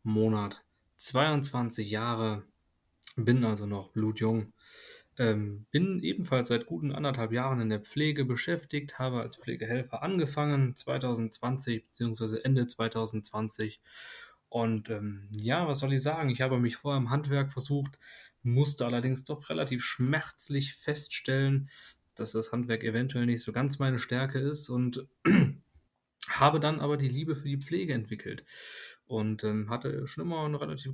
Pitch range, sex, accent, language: 115-140 Hz, male, German, German